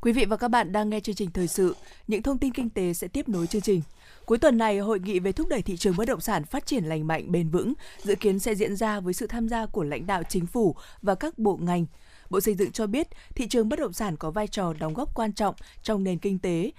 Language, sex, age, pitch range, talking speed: Vietnamese, female, 20-39, 175-220 Hz, 280 wpm